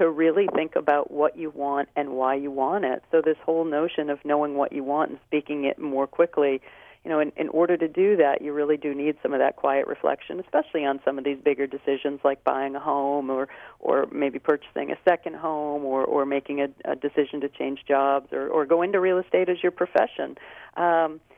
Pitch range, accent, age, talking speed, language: 145-180 Hz, American, 40-59, 225 wpm, English